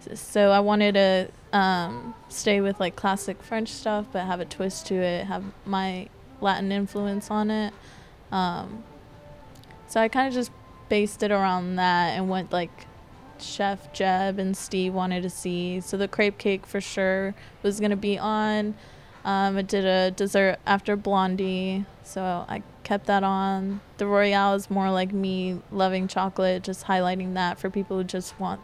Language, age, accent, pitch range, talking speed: English, 20-39, American, 185-205 Hz, 170 wpm